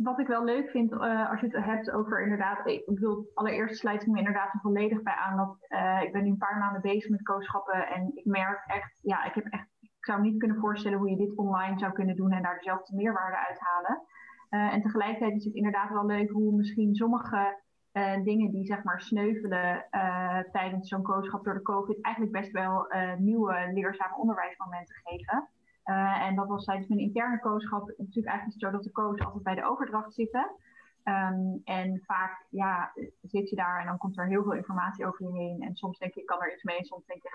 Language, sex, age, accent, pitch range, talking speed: Dutch, female, 20-39, Dutch, 190-215 Hz, 230 wpm